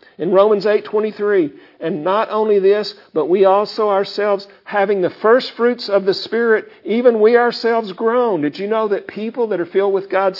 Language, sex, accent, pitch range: English, male, American, 165-220 Hz